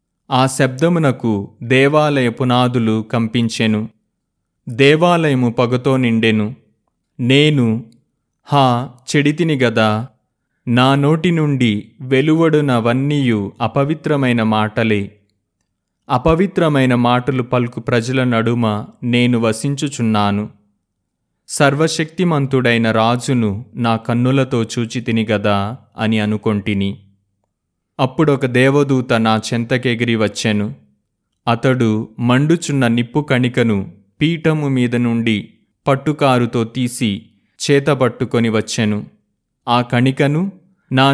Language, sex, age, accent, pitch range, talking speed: Telugu, male, 30-49, native, 110-140 Hz, 75 wpm